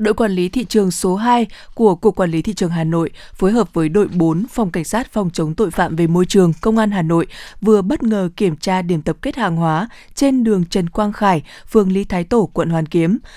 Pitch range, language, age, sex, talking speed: 170-215 Hz, Vietnamese, 20-39, female, 250 wpm